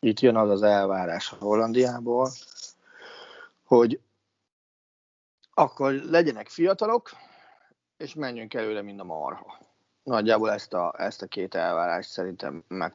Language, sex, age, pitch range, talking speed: Hungarian, male, 30-49, 105-130 Hz, 115 wpm